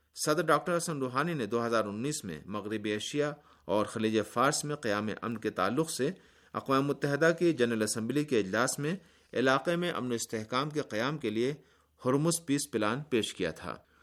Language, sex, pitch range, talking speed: Urdu, male, 105-140 Hz, 180 wpm